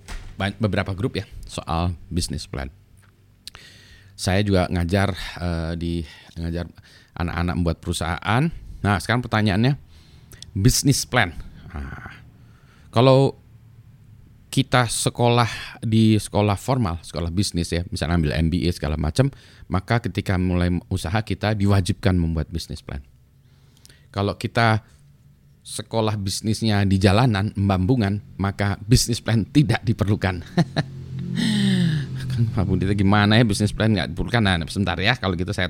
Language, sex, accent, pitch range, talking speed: Indonesian, male, native, 85-115 Hz, 120 wpm